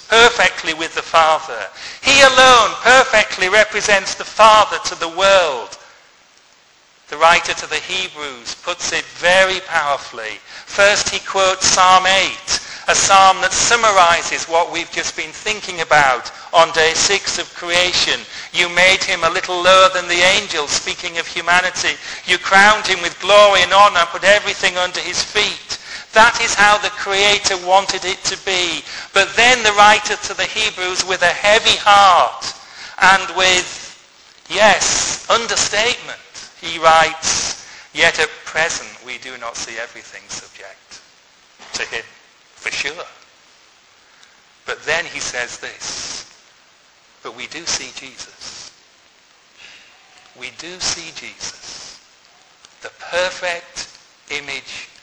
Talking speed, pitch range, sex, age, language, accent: 135 wpm, 170-200 Hz, male, 40-59, English, British